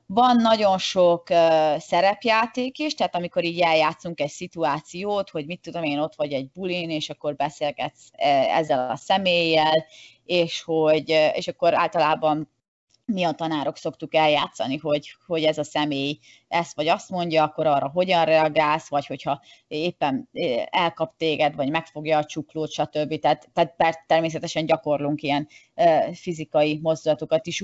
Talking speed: 150 wpm